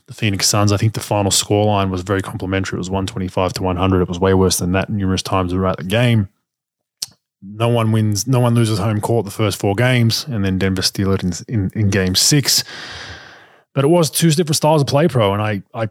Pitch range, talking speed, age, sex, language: 100-120 Hz, 235 wpm, 20-39, male, English